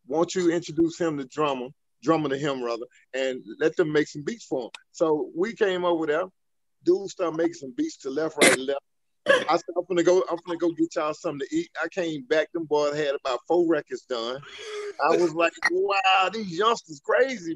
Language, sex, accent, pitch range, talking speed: English, male, American, 140-195 Hz, 210 wpm